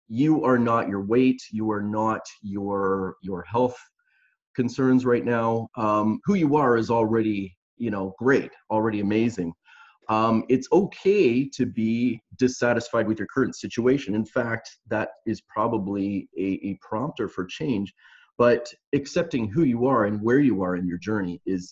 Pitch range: 95-120 Hz